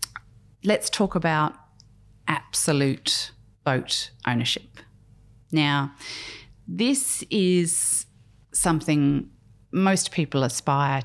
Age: 40-59